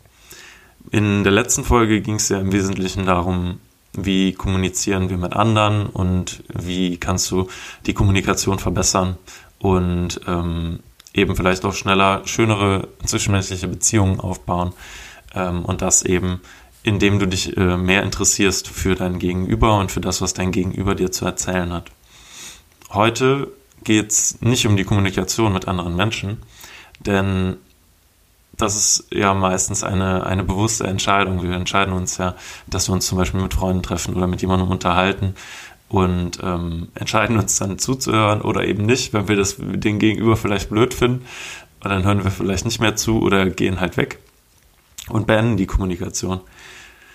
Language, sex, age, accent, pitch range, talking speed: German, male, 20-39, German, 90-105 Hz, 155 wpm